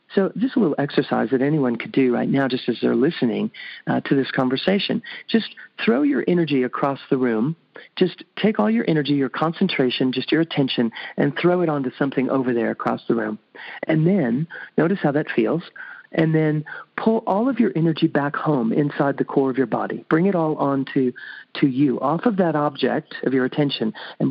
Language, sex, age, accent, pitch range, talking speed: English, male, 40-59, American, 130-170 Hz, 200 wpm